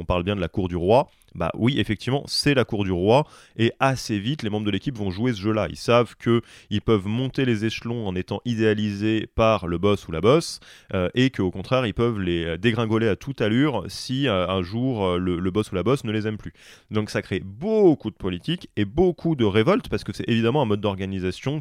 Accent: French